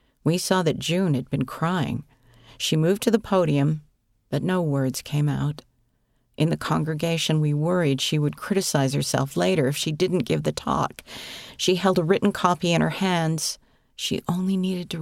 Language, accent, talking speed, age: English, American, 180 wpm, 50-69